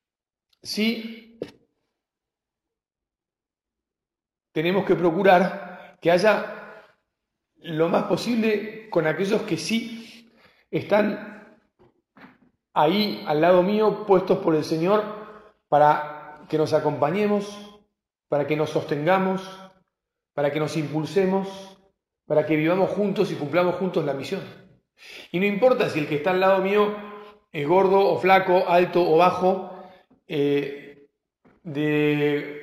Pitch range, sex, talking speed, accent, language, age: 155-210 Hz, male, 115 wpm, Argentinian, Spanish, 40-59